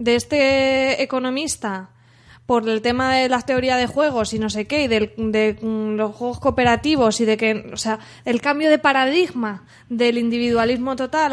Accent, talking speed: Spanish, 170 wpm